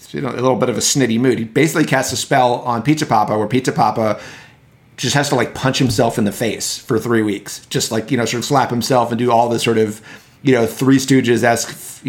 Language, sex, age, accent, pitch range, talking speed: English, male, 30-49, American, 110-130 Hz, 240 wpm